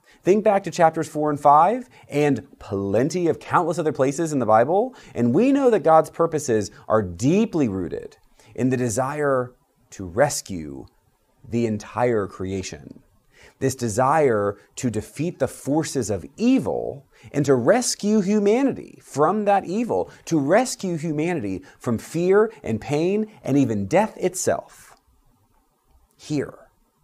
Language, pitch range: English, 115-195 Hz